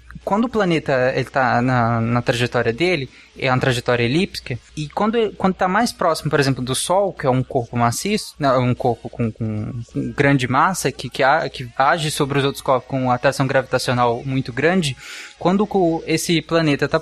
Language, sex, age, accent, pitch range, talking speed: Portuguese, male, 20-39, Brazilian, 130-170 Hz, 195 wpm